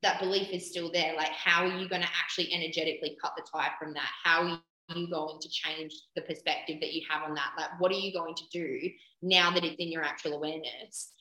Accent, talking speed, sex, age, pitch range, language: Australian, 240 wpm, female, 20-39, 160-185 Hz, English